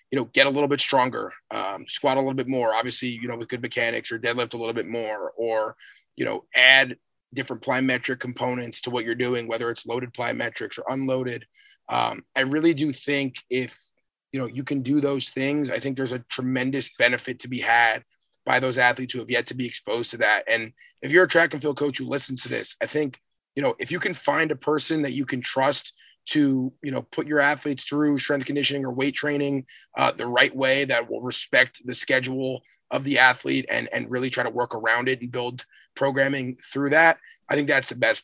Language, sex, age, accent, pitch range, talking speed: English, male, 30-49, American, 125-145 Hz, 225 wpm